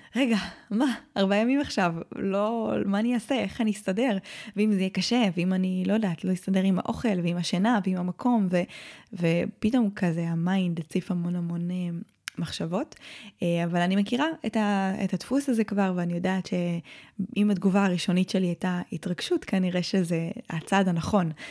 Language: Hebrew